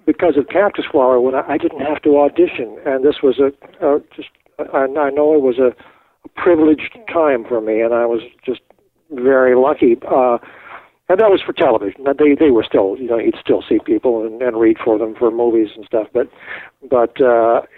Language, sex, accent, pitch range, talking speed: English, male, American, 130-155 Hz, 190 wpm